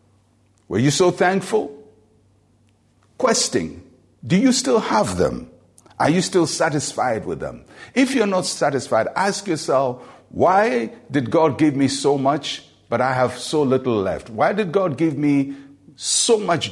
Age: 60-79